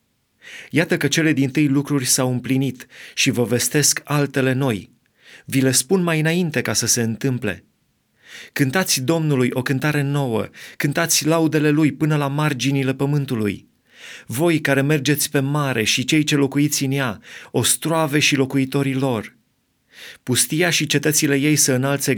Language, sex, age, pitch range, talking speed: Romanian, male, 30-49, 125-150 Hz, 150 wpm